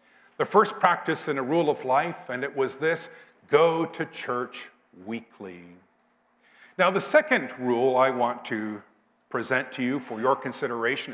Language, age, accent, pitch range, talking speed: English, 50-69, American, 115-170 Hz, 155 wpm